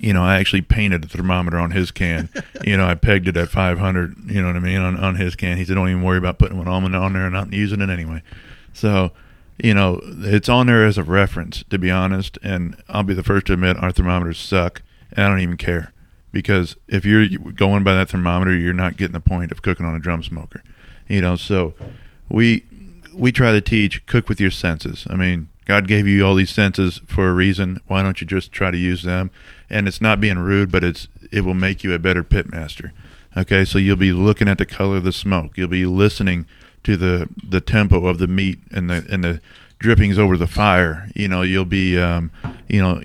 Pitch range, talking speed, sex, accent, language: 90-100 Hz, 235 wpm, male, American, English